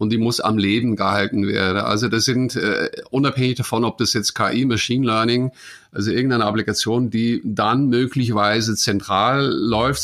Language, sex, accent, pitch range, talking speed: English, male, German, 110-125 Hz, 160 wpm